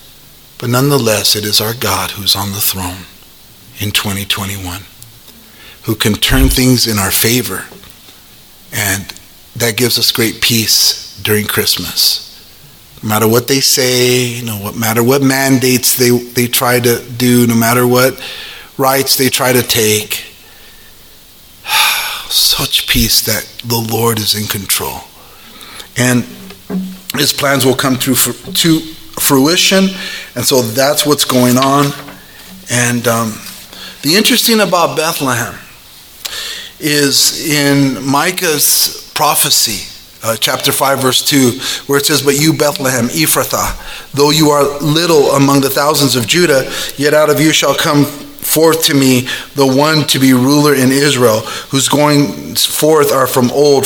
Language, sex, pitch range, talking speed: English, male, 115-145 Hz, 140 wpm